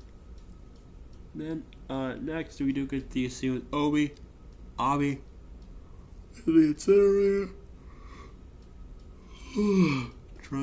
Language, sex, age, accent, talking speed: English, male, 20-39, American, 85 wpm